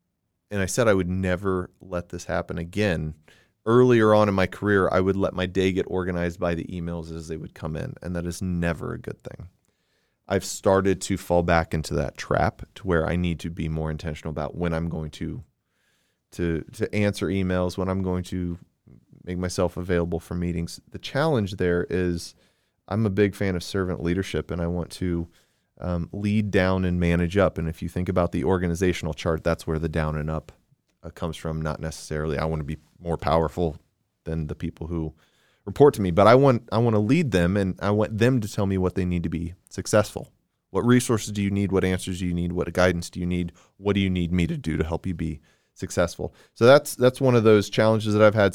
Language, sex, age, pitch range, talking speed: English, male, 30-49, 85-95 Hz, 225 wpm